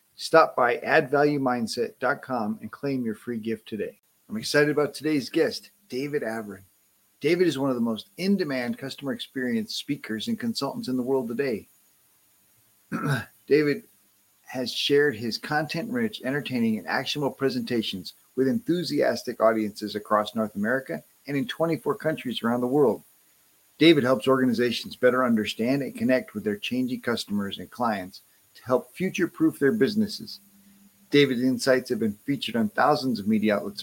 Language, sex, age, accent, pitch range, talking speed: English, male, 40-59, American, 115-165 Hz, 145 wpm